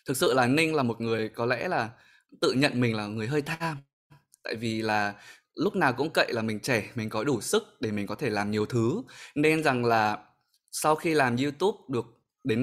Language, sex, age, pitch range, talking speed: Vietnamese, male, 20-39, 115-150 Hz, 225 wpm